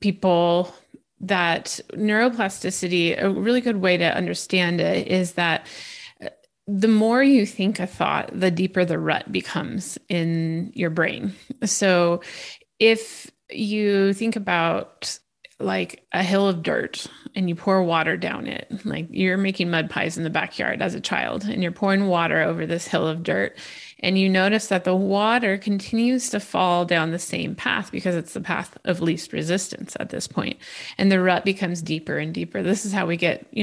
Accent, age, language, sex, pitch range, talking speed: American, 30-49, English, female, 175-210 Hz, 175 wpm